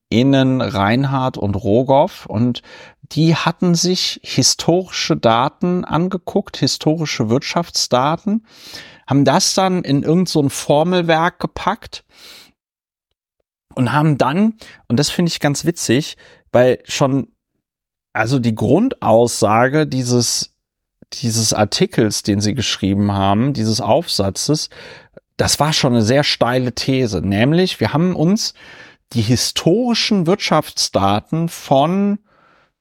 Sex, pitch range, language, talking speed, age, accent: male, 120-170 Hz, German, 110 wpm, 40-59, German